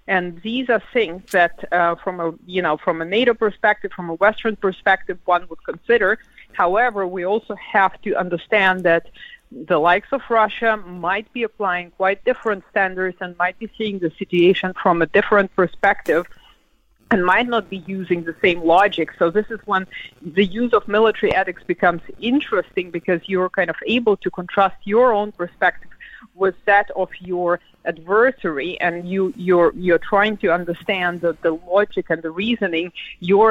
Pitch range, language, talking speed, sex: 175-210 Hz, English, 170 wpm, female